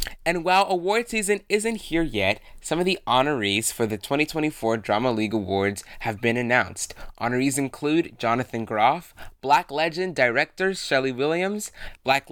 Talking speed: 145 wpm